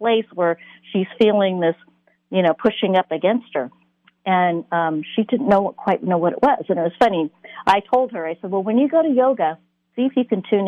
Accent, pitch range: American, 170-225 Hz